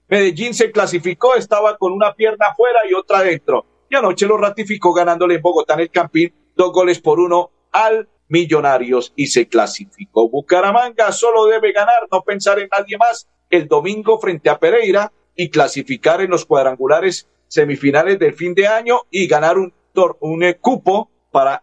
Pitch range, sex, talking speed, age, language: 170-230 Hz, male, 170 wpm, 50-69, Spanish